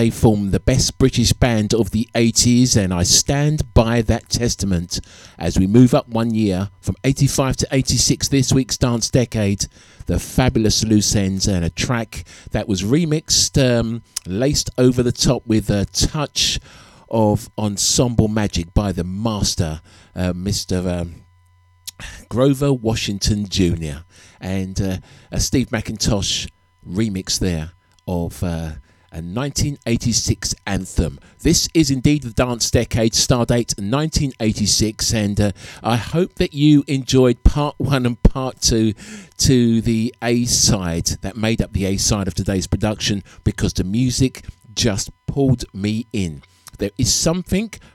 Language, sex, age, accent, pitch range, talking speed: English, male, 50-69, British, 95-125 Hz, 145 wpm